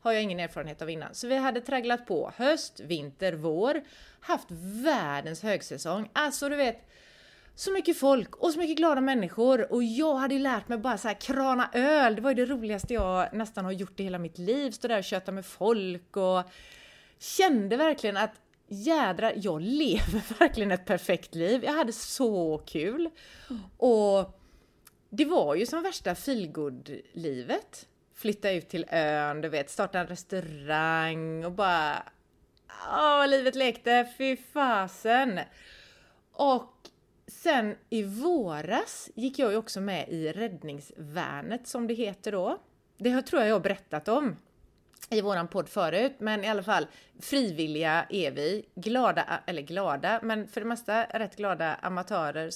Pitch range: 180-260 Hz